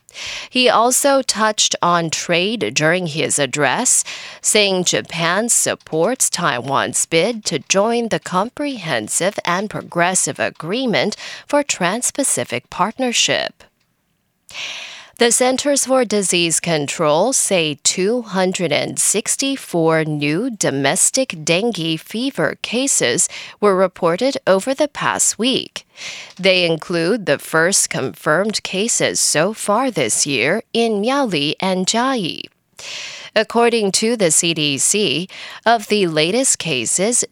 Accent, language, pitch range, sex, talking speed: American, English, 170-235 Hz, female, 100 wpm